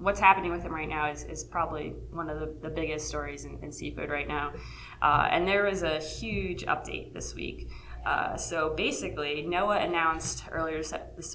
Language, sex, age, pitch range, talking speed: English, female, 20-39, 150-165 Hz, 190 wpm